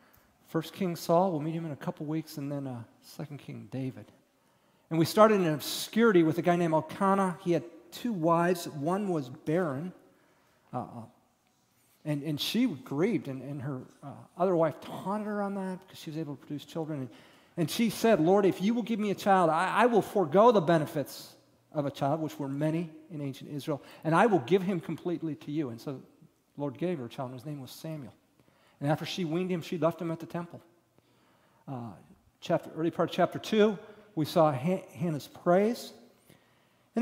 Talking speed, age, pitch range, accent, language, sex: 205 wpm, 40-59, 145-180 Hz, American, English, male